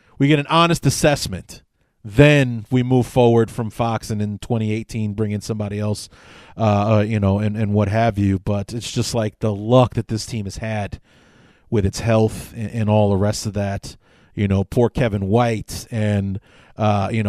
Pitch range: 105-130 Hz